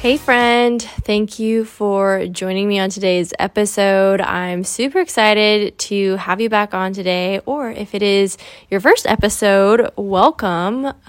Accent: American